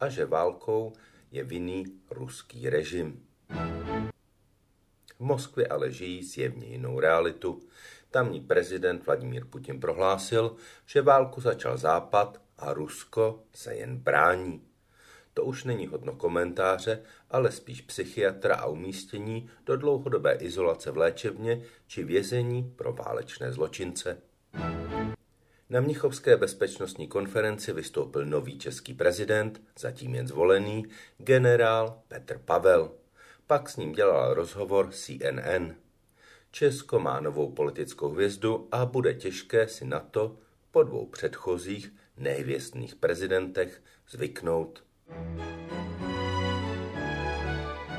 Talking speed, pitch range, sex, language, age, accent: 105 wpm, 90-125 Hz, male, Czech, 50-69, native